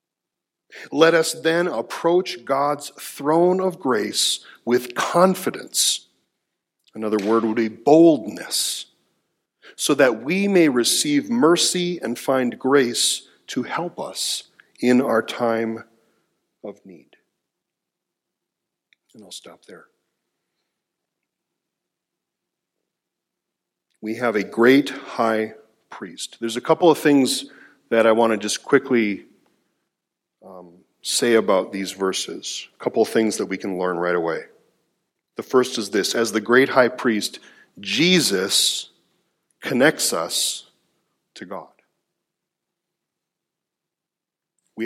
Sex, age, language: male, 40-59, English